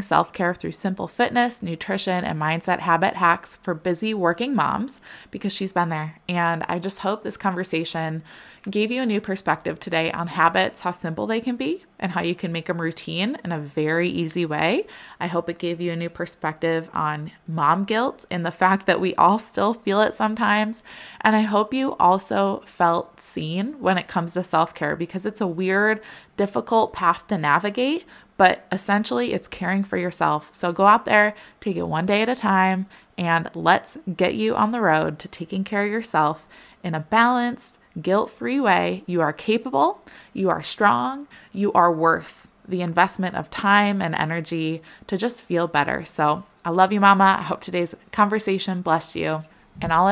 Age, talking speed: 20-39, 185 wpm